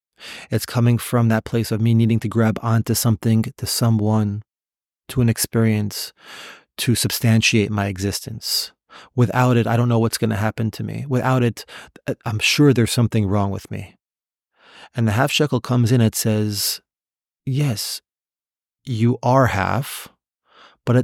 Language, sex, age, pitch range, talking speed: English, male, 30-49, 105-120 Hz, 150 wpm